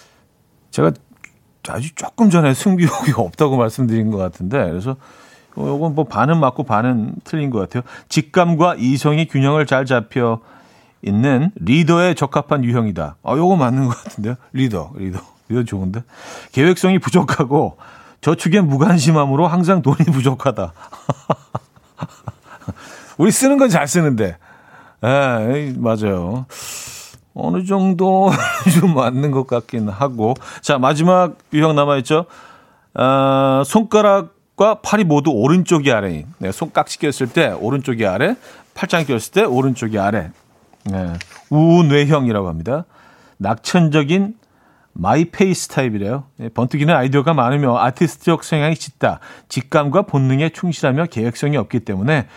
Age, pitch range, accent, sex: 40-59, 125-170 Hz, native, male